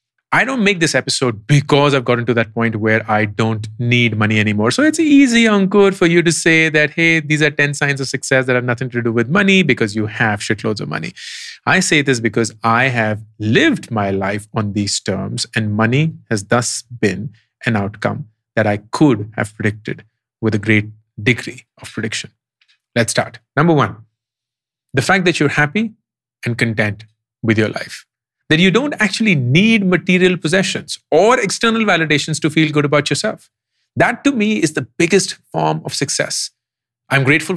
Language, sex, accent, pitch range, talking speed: English, male, Indian, 110-155 Hz, 185 wpm